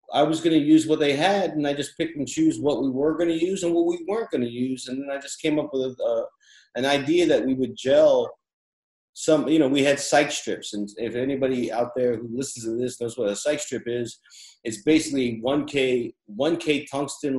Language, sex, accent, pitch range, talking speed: English, male, American, 110-140 Hz, 240 wpm